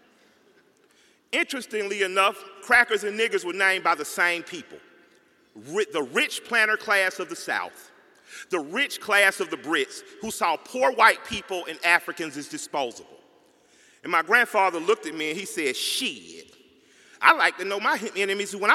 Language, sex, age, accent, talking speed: English, male, 40-59, American, 160 wpm